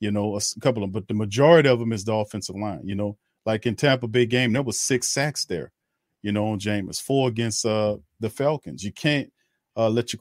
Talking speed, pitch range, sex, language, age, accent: 240 wpm, 100-120 Hz, male, English, 40-59, American